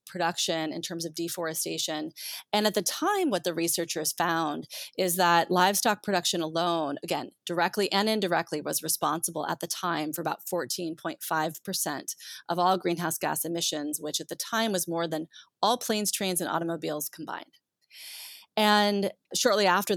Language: English